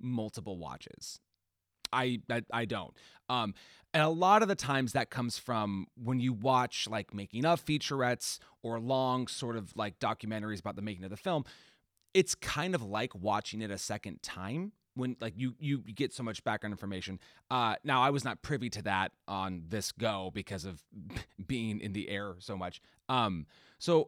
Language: English